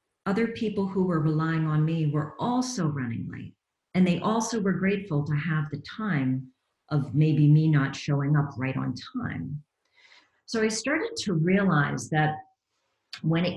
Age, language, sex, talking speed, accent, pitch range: 50-69, English, female, 165 wpm, American, 140-180 Hz